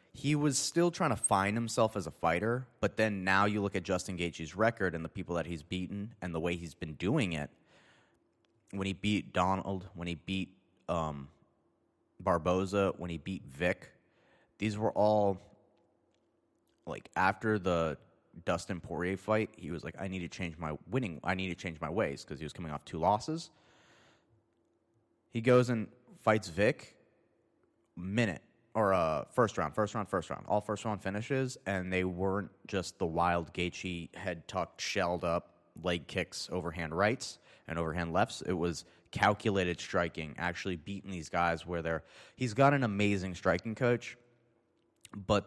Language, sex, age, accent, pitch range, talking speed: English, male, 30-49, American, 85-110 Hz, 170 wpm